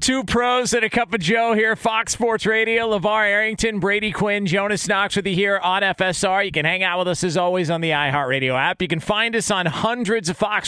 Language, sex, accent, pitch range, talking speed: English, male, American, 135-190 Hz, 235 wpm